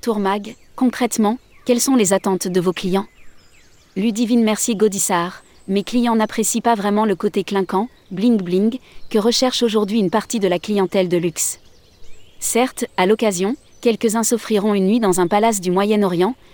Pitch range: 180-225 Hz